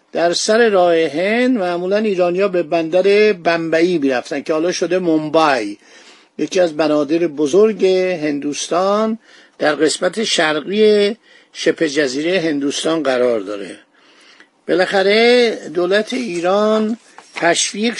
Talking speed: 105 wpm